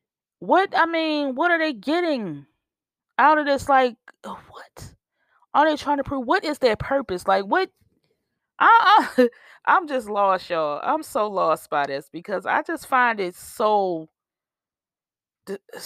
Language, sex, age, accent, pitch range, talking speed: English, female, 20-39, American, 160-255 Hz, 145 wpm